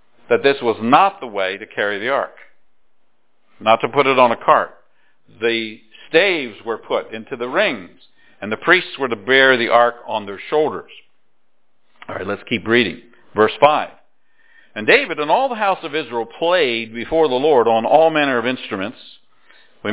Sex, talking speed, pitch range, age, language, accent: male, 180 wpm, 120-170 Hz, 50-69, English, American